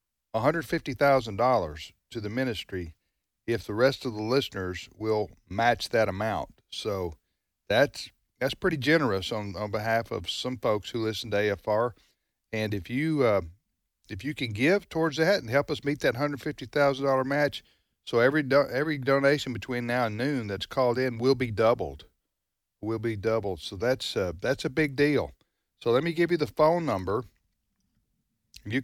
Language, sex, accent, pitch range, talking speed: English, male, American, 105-140 Hz, 180 wpm